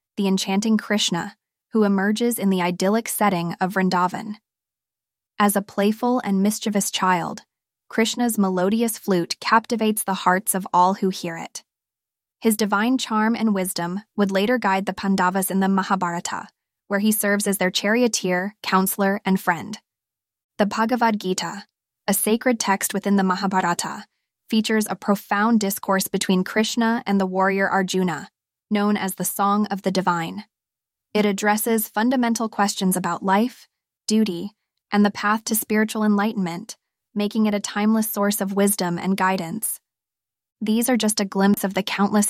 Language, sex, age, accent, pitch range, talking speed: English, female, 20-39, American, 190-215 Hz, 150 wpm